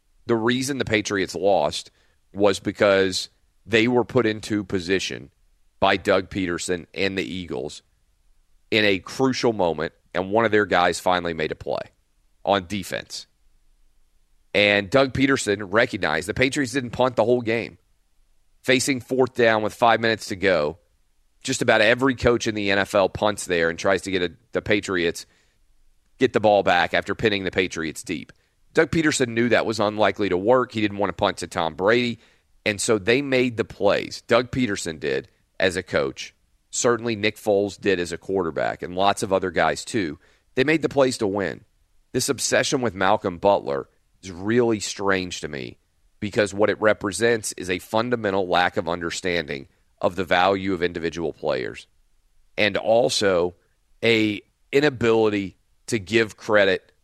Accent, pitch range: American, 90-115 Hz